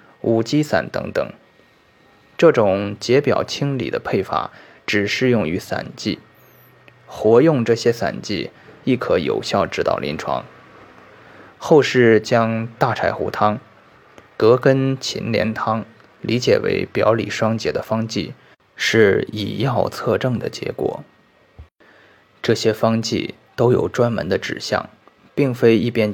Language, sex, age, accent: Chinese, male, 20-39, native